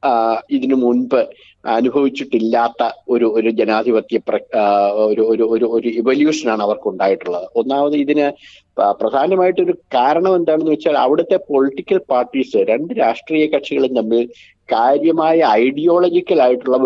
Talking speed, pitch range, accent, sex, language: 95 wpm, 120-185 Hz, native, male, Malayalam